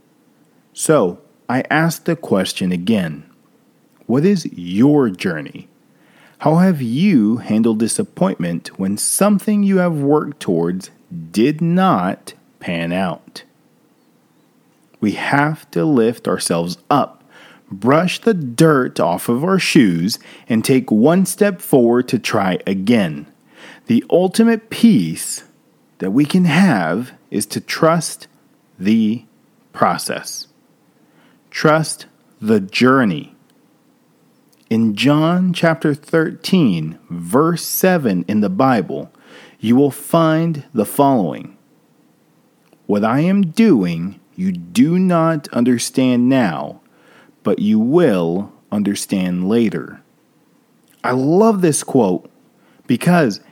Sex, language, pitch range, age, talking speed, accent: male, English, 115-185 Hz, 40-59, 105 wpm, American